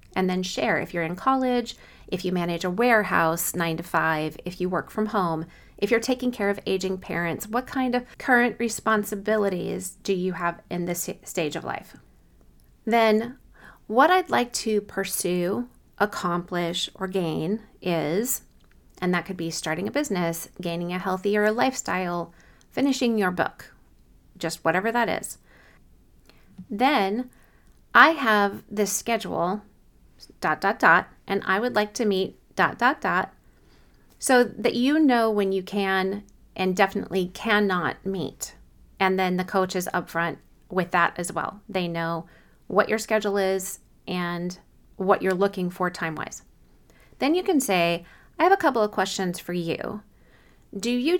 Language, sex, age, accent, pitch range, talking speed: English, female, 30-49, American, 175-220 Hz, 155 wpm